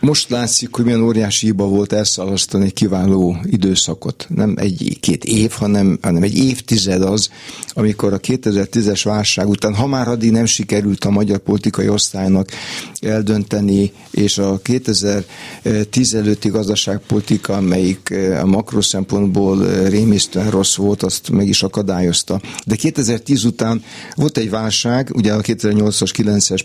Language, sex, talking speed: Hungarian, male, 125 wpm